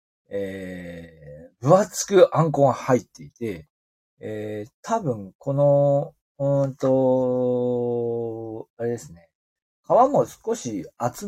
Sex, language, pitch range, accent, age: male, Japanese, 125-195 Hz, native, 40-59